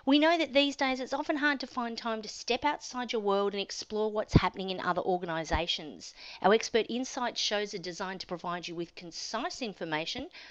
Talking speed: 200 wpm